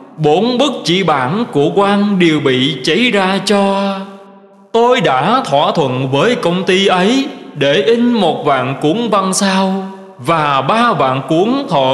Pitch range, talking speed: 150-220 Hz, 155 wpm